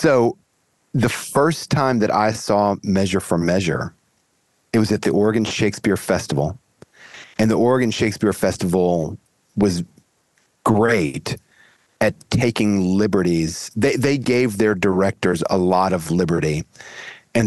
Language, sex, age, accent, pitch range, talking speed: English, male, 40-59, American, 95-120 Hz, 125 wpm